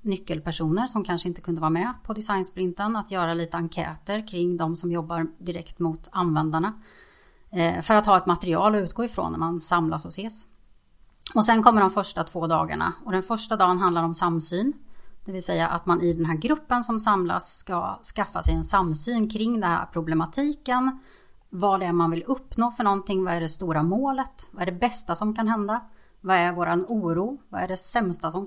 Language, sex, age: Swedish, female, 30-49